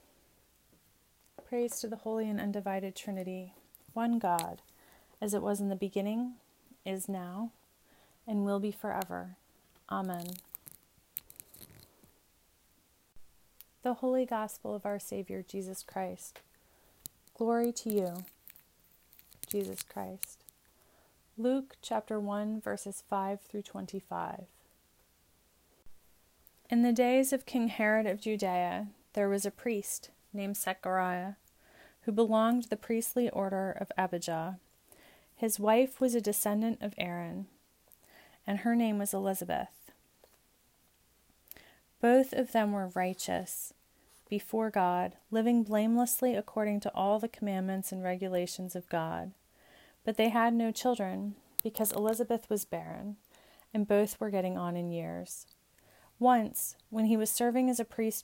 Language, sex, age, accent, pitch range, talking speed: English, female, 30-49, American, 185-225 Hz, 120 wpm